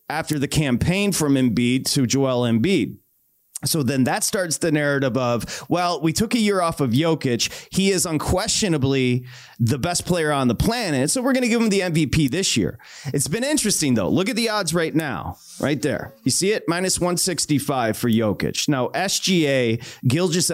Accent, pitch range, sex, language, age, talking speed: American, 130-180 Hz, male, English, 30-49, 185 wpm